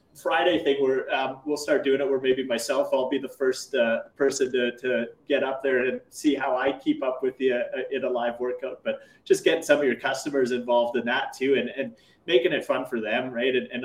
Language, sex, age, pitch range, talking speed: English, male, 30-49, 120-135 Hz, 245 wpm